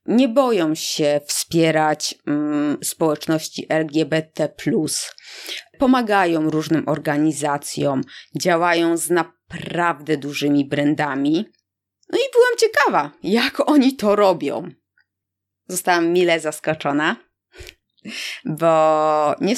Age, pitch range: 20-39, 155-220 Hz